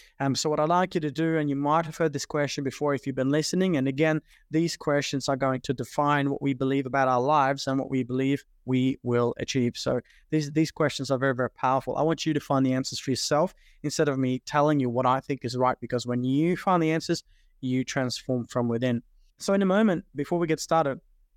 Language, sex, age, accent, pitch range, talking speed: English, male, 20-39, Australian, 130-160 Hz, 240 wpm